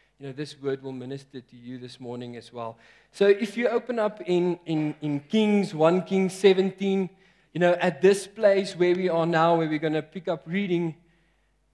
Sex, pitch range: male, 135-175 Hz